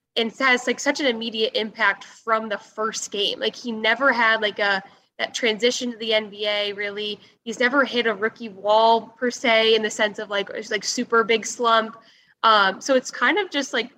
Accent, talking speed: American, 205 wpm